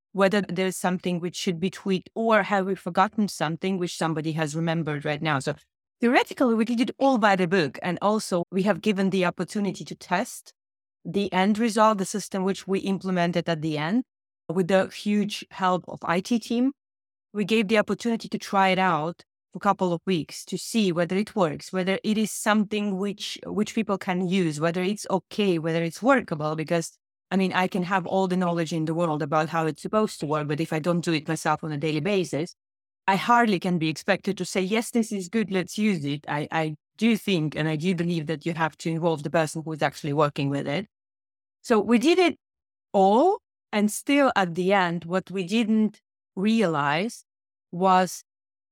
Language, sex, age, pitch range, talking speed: English, female, 30-49, 165-210 Hz, 205 wpm